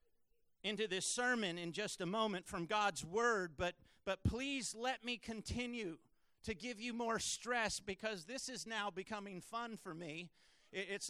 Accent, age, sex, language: American, 50-69, male, English